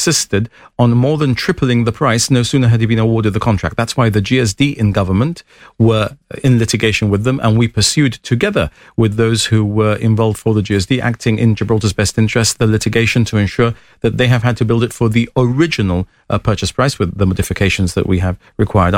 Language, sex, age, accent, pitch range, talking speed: English, male, 40-59, British, 105-125 Hz, 210 wpm